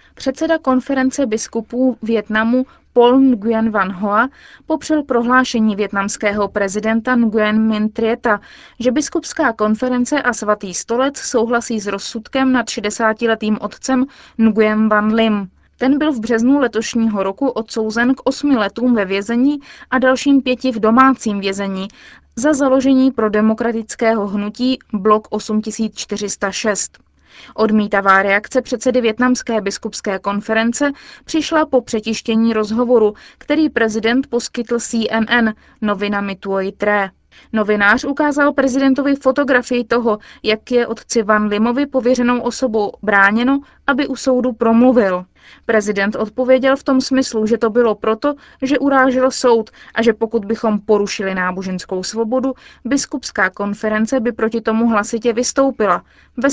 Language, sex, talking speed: Czech, female, 125 wpm